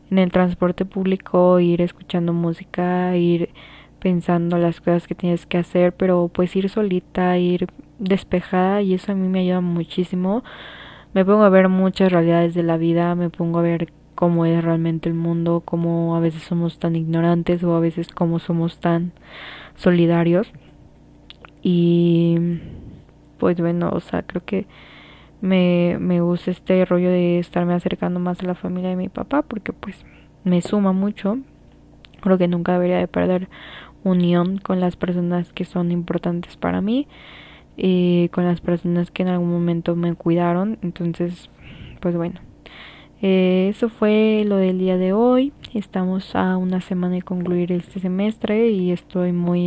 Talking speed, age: 160 wpm, 20-39